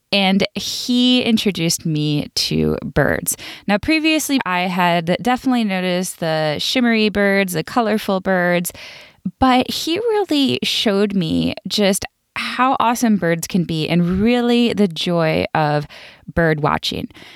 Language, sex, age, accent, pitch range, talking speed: English, female, 20-39, American, 170-230 Hz, 125 wpm